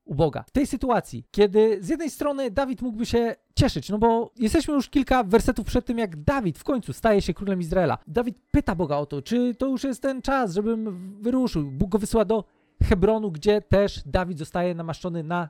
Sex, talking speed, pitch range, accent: male, 205 wpm, 155-220 Hz, native